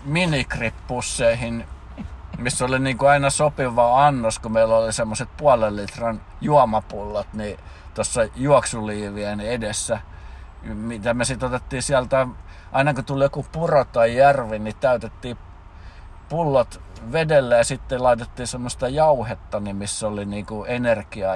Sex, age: male, 50-69